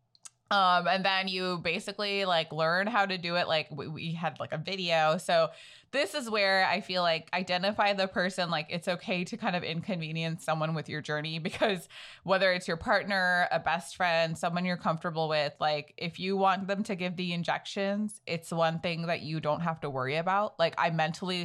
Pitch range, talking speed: 155-185 Hz, 205 wpm